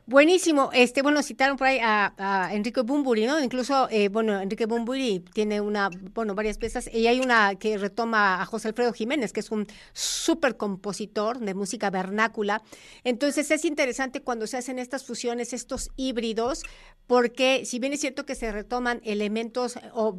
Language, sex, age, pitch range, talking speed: Spanish, female, 50-69, 220-260 Hz, 170 wpm